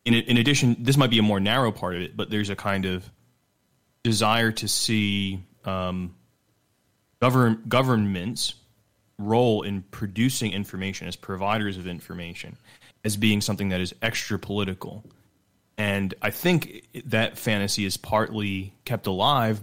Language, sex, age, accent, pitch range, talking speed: English, male, 20-39, American, 95-115 Hz, 140 wpm